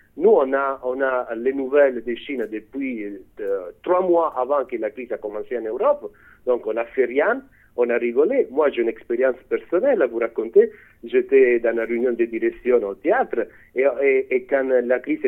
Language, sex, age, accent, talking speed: French, male, 50-69, Italian, 200 wpm